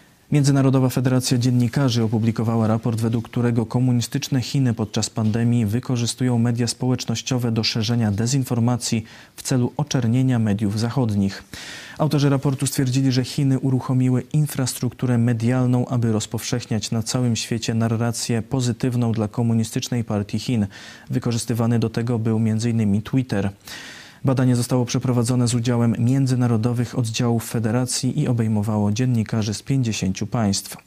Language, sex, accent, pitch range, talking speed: Polish, male, native, 110-125 Hz, 120 wpm